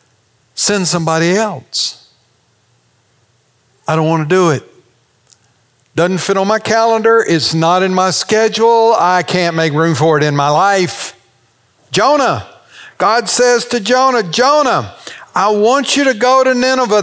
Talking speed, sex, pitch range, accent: 145 wpm, male, 125-205 Hz, American